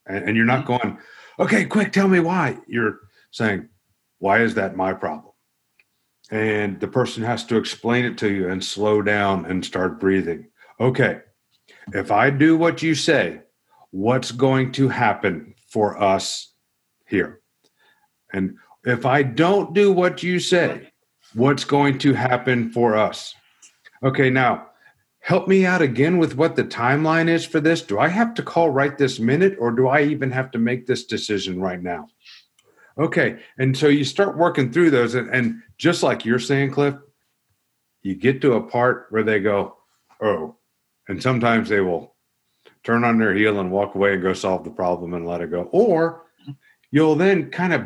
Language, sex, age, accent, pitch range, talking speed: English, male, 50-69, American, 105-150 Hz, 175 wpm